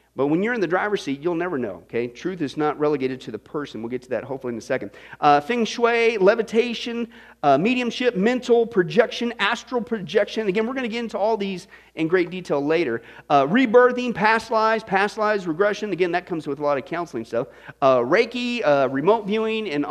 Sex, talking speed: male, 210 wpm